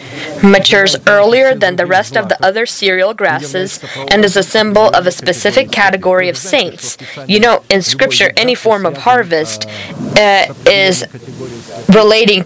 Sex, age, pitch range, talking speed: female, 20-39, 175-220 Hz, 150 wpm